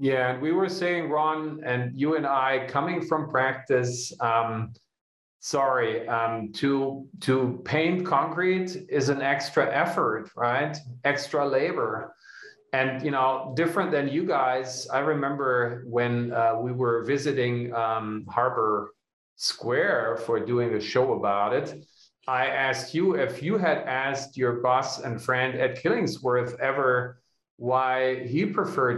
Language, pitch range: English, 125-155 Hz